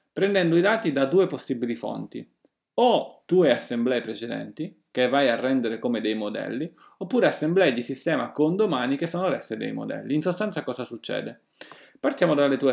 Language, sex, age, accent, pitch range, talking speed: Italian, male, 30-49, native, 125-185 Hz, 170 wpm